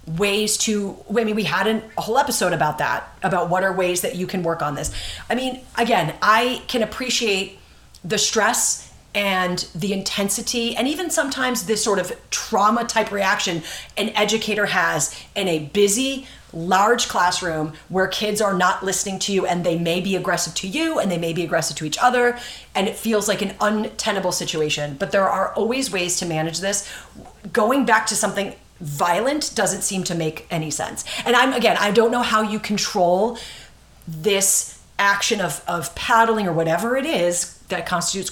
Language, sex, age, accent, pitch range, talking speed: English, female, 30-49, American, 180-230 Hz, 180 wpm